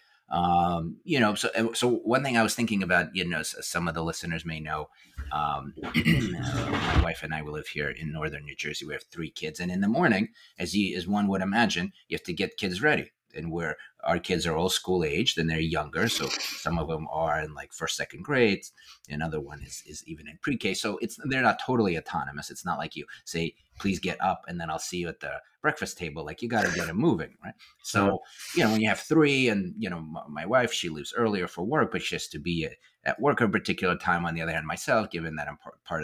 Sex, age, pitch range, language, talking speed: male, 30-49, 85-110 Hz, English, 245 wpm